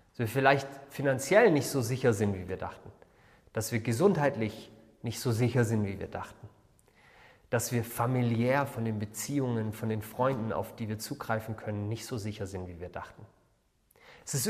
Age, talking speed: 40-59, 175 wpm